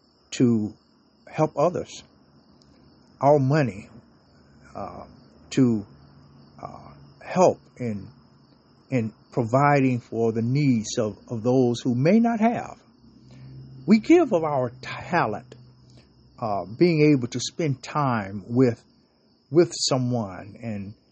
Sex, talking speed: male, 105 wpm